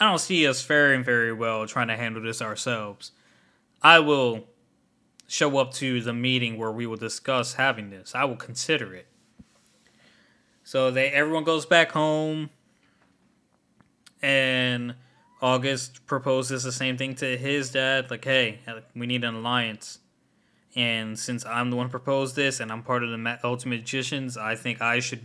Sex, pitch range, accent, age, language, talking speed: male, 120-140 Hz, American, 20-39, English, 165 wpm